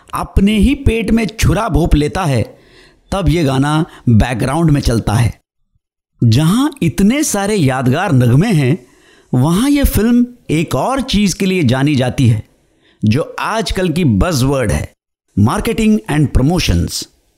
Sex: male